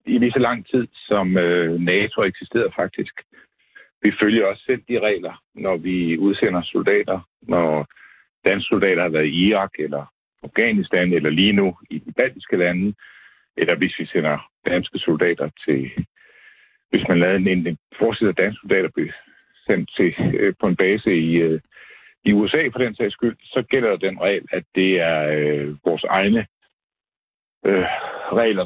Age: 60-79